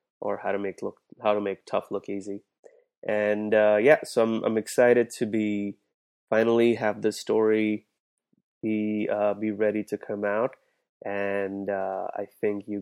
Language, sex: English, male